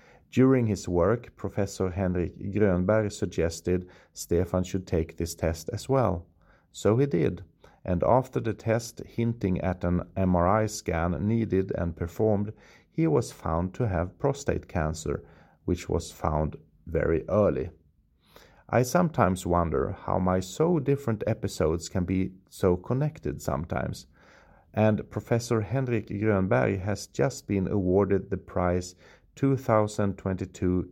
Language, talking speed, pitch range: English, 125 wpm, 90-110 Hz